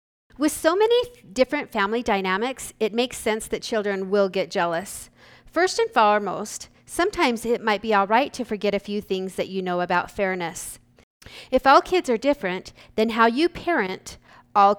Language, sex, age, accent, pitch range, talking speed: English, female, 40-59, American, 190-275 Hz, 175 wpm